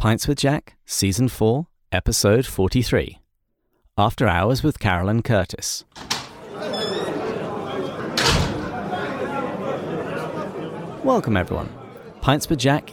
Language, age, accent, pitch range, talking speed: English, 30-49, British, 100-125 Hz, 80 wpm